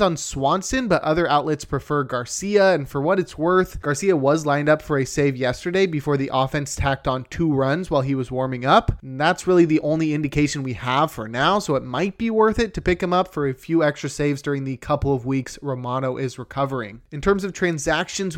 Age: 20-39